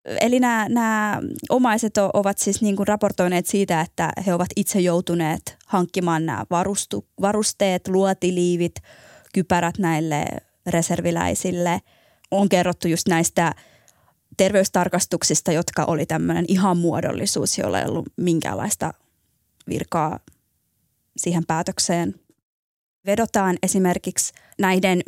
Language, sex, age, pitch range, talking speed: Finnish, female, 20-39, 170-200 Hz, 100 wpm